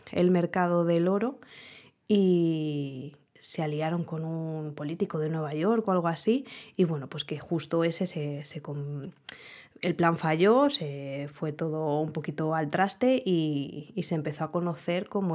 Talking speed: 165 wpm